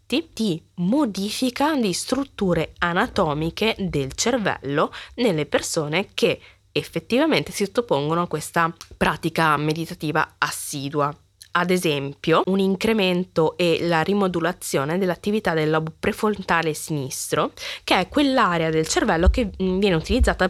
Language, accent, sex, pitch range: Italian, native, female, 155-200 Hz